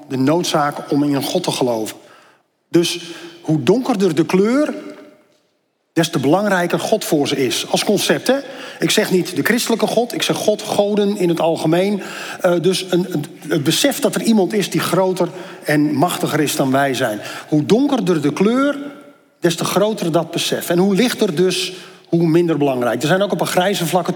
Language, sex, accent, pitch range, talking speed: Dutch, male, Dutch, 155-205 Hz, 190 wpm